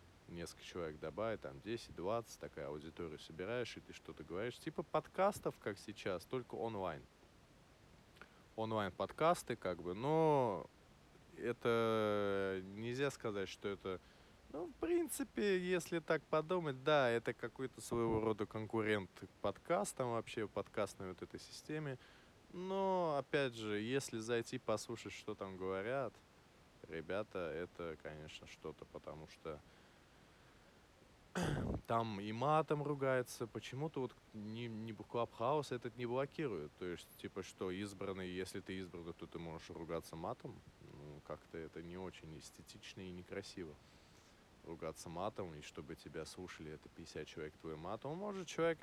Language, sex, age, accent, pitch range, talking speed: Russian, male, 20-39, native, 95-130 Hz, 130 wpm